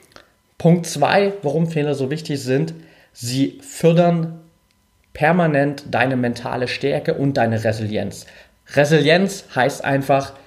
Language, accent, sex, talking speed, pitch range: German, German, male, 110 wpm, 120-155 Hz